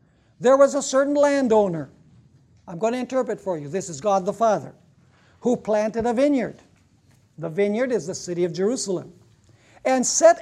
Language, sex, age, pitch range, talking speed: English, male, 60-79, 185-270 Hz, 165 wpm